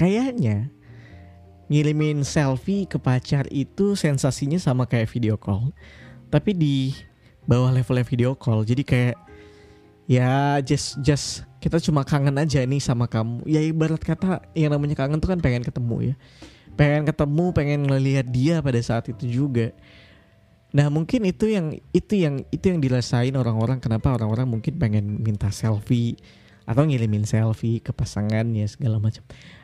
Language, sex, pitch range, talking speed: Indonesian, male, 115-150 Hz, 150 wpm